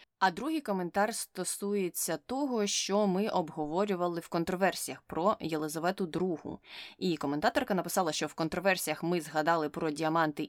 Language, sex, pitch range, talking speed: Ukrainian, female, 155-200 Hz, 135 wpm